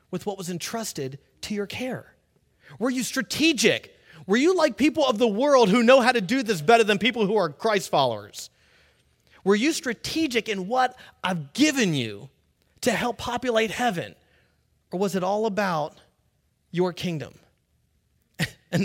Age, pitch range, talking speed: 30-49, 165-245 Hz, 160 wpm